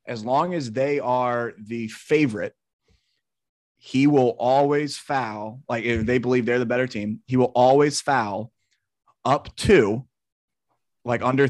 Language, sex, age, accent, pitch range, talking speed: English, male, 30-49, American, 120-140 Hz, 140 wpm